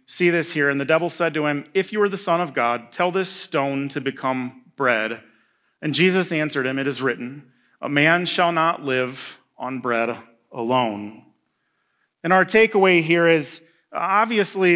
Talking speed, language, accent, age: 175 wpm, English, American, 30-49